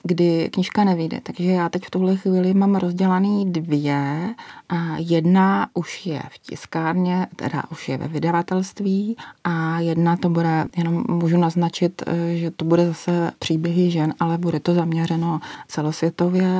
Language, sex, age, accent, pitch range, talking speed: Czech, female, 30-49, native, 160-180 Hz, 150 wpm